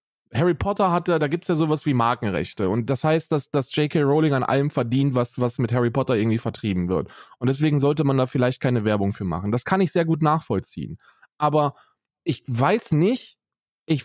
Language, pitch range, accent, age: German, 125-165 Hz, German, 20-39